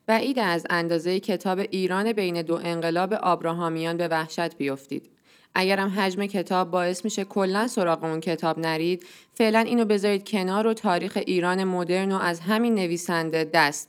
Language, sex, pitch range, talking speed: Persian, female, 170-210 Hz, 160 wpm